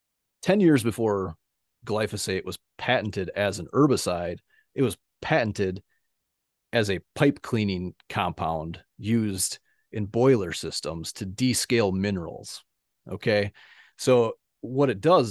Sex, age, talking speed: male, 30-49, 115 wpm